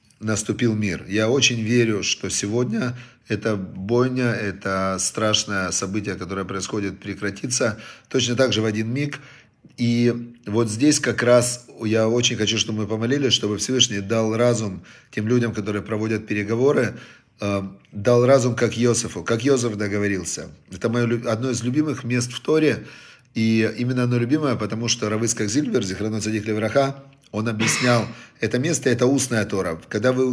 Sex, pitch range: male, 105-125 Hz